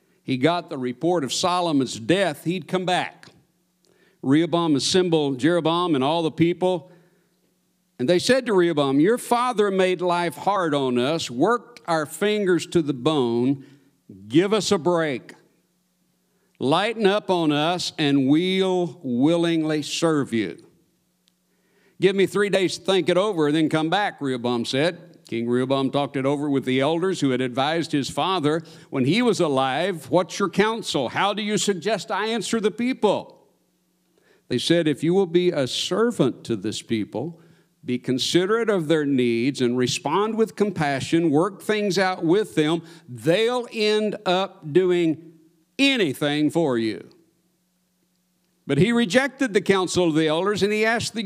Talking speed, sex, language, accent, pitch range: 155 wpm, male, English, American, 145-190 Hz